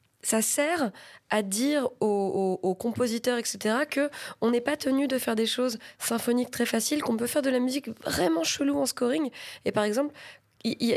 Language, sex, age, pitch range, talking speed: French, female, 20-39, 195-255 Hz, 185 wpm